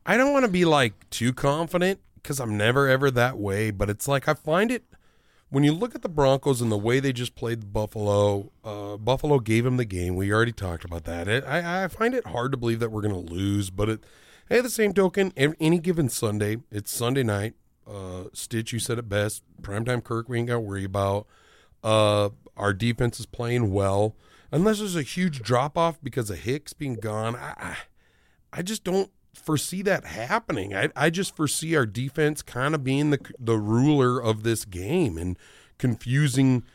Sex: male